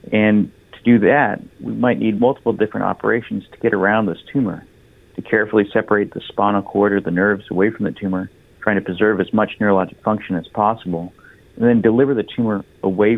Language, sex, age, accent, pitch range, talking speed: English, male, 50-69, American, 90-110 Hz, 195 wpm